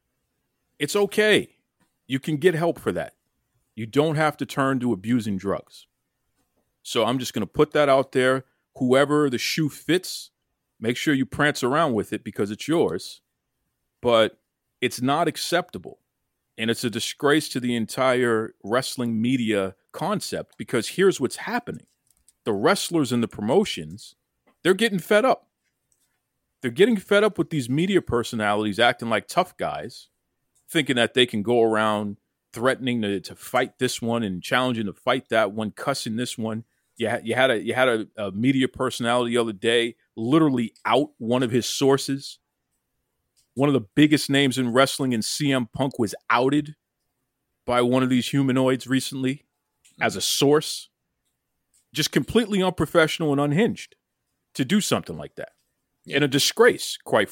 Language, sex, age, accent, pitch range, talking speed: English, male, 40-59, American, 120-150 Hz, 160 wpm